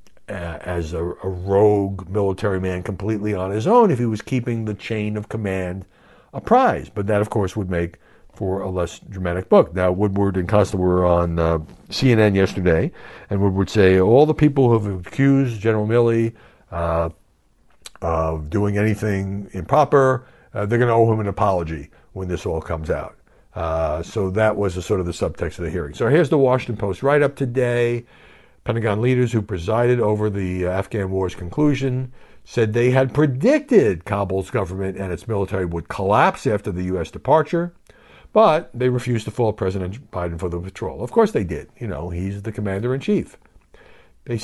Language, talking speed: English, 180 wpm